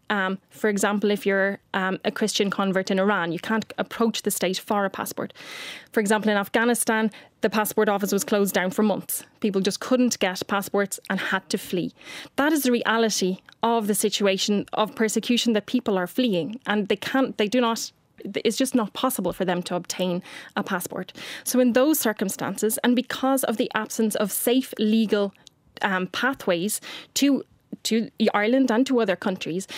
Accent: Irish